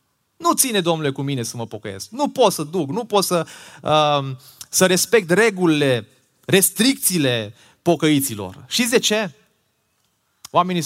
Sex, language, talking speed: male, Romanian, 140 wpm